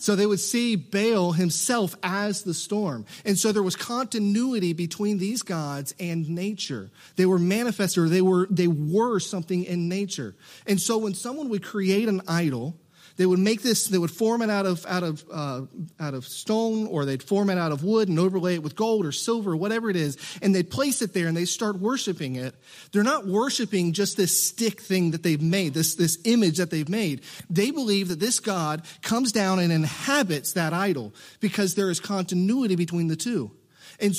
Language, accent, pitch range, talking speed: English, American, 165-210 Hz, 200 wpm